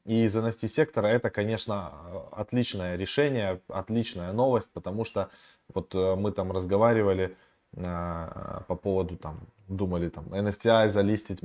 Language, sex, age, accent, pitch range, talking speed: Russian, male, 20-39, native, 95-115 Hz, 120 wpm